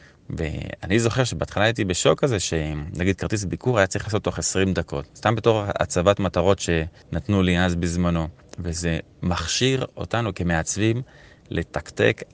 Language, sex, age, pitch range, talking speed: Hebrew, male, 30-49, 85-105 Hz, 135 wpm